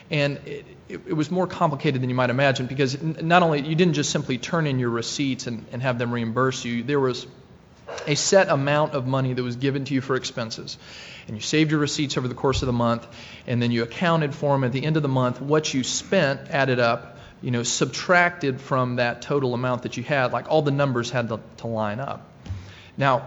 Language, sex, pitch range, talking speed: English, male, 120-145 Hz, 230 wpm